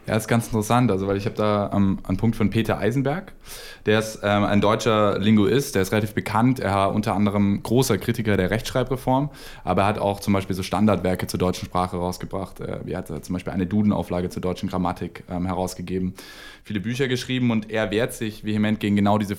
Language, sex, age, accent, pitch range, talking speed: German, male, 10-29, German, 100-120 Hz, 215 wpm